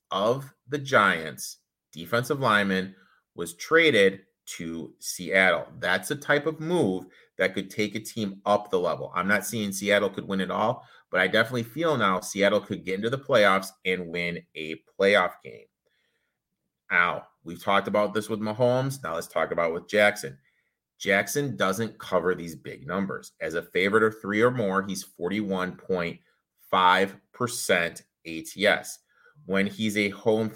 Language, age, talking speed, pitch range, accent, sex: English, 30-49, 155 wpm, 95-120 Hz, American, male